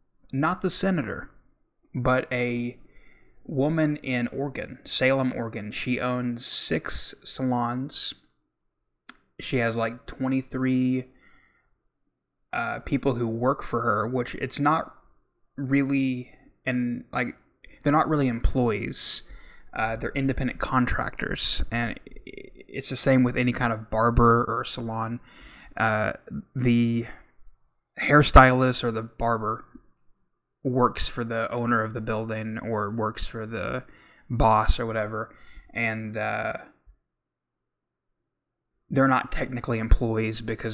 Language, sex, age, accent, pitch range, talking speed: English, male, 20-39, American, 115-130 Hz, 110 wpm